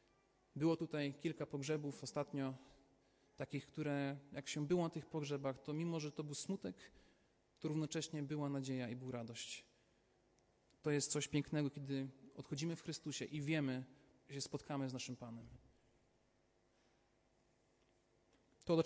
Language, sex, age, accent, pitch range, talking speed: Polish, male, 40-59, native, 135-170 Hz, 140 wpm